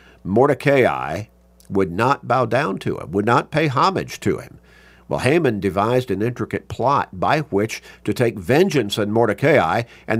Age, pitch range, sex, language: 50-69, 80-120 Hz, male, English